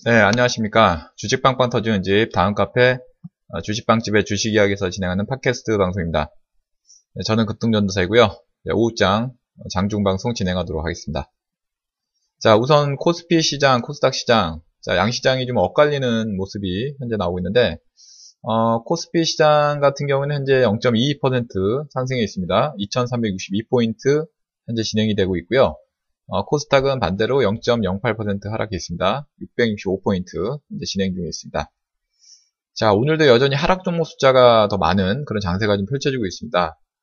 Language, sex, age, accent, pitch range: Korean, male, 20-39, native, 100-140 Hz